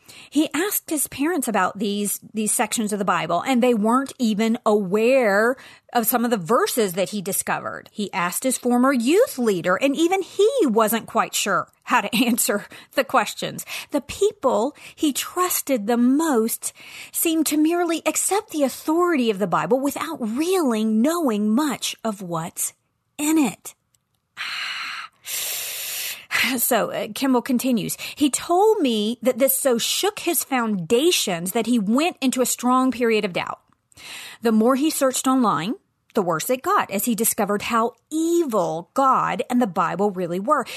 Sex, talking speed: female, 155 wpm